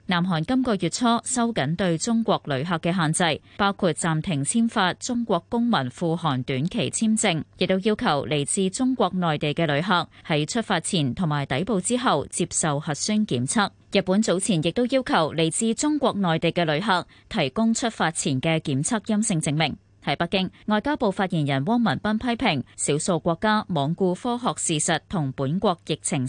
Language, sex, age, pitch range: Chinese, female, 20-39, 155-215 Hz